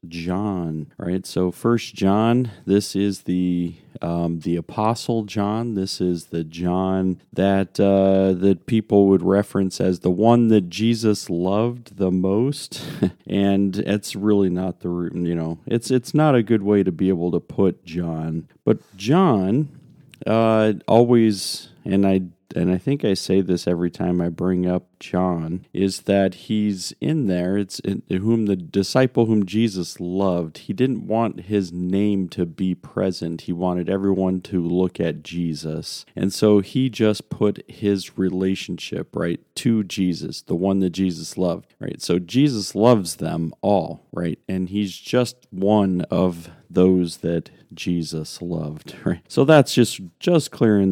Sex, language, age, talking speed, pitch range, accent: male, English, 40-59, 155 wpm, 90-105 Hz, American